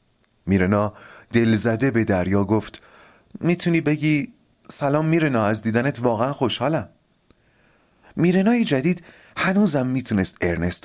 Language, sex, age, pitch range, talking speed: Persian, male, 30-49, 90-140 Hz, 105 wpm